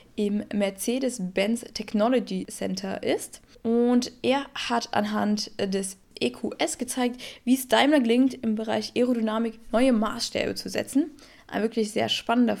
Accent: German